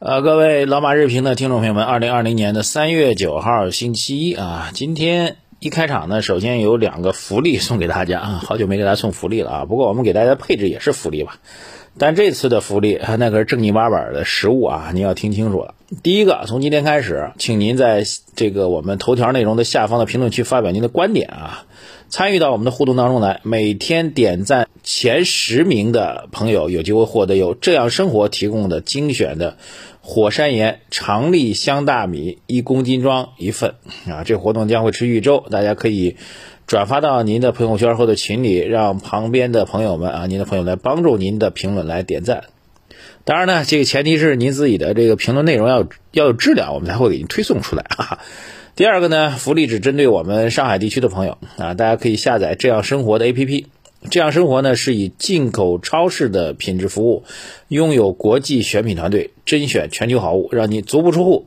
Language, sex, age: Chinese, male, 30-49